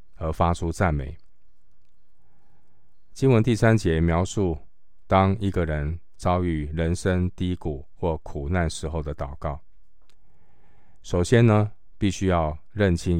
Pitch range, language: 80-95 Hz, Chinese